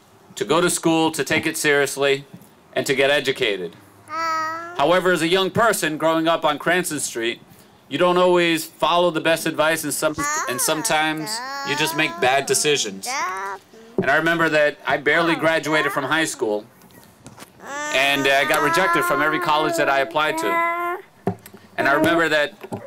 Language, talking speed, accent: English, 160 wpm, American